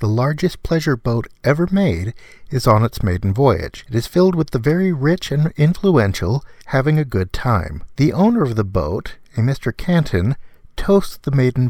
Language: English